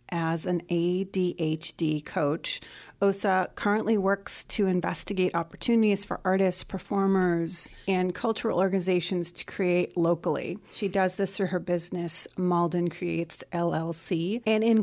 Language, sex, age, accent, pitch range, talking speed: English, female, 30-49, American, 170-195 Hz, 120 wpm